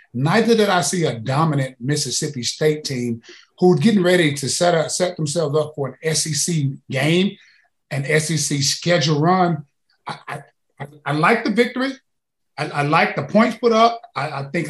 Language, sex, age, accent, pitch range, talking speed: English, male, 30-49, American, 140-175 Hz, 175 wpm